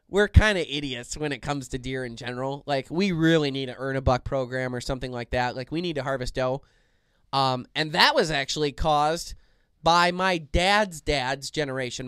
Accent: American